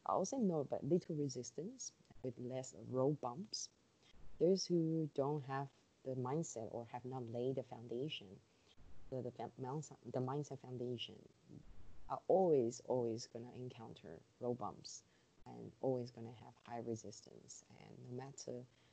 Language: English